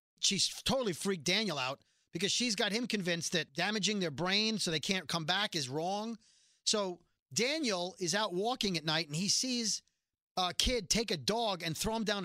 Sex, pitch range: male, 170-220 Hz